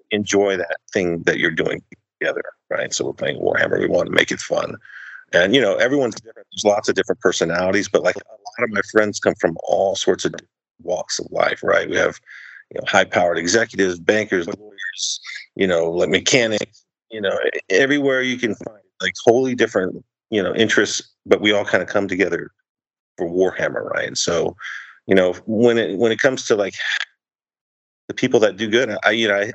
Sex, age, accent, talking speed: male, 40-59, American, 200 wpm